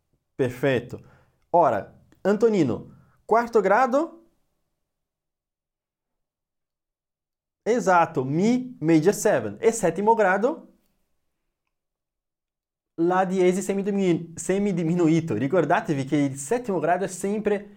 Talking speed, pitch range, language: 80 wpm, 115-185 Hz, Italian